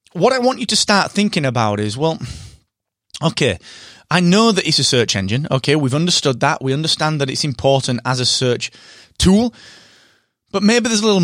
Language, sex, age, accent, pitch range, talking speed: English, male, 30-49, British, 125-185 Hz, 190 wpm